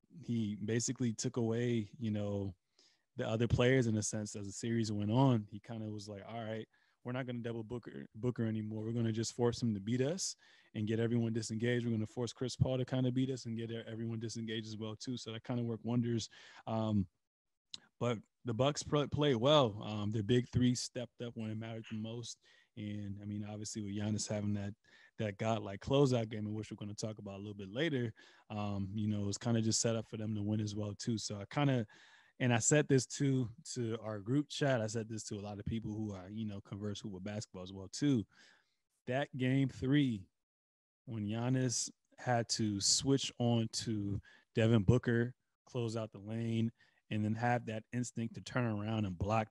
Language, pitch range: English, 105-120 Hz